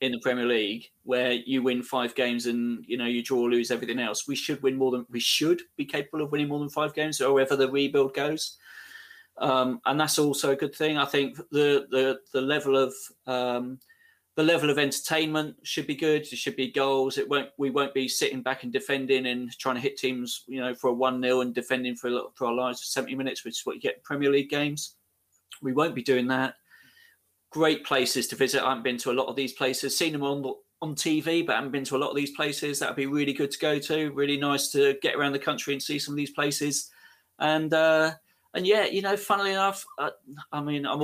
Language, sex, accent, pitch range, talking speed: English, male, British, 130-150 Hz, 245 wpm